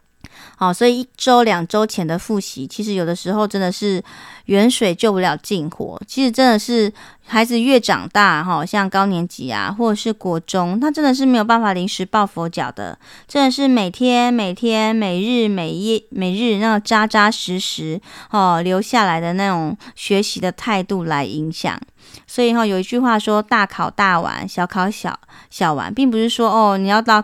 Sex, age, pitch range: female, 30-49, 185-230 Hz